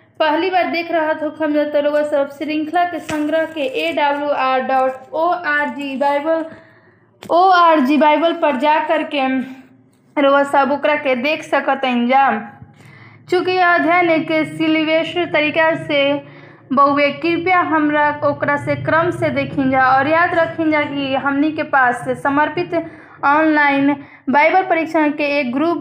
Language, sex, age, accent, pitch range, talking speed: Hindi, female, 20-39, native, 280-320 Hz, 135 wpm